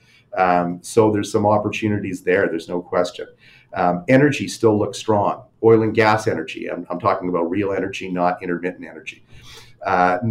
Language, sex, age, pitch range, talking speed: English, male, 40-59, 90-120 Hz, 165 wpm